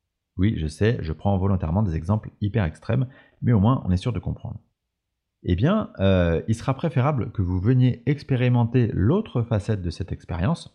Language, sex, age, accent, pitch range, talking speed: French, male, 30-49, French, 90-120 Hz, 185 wpm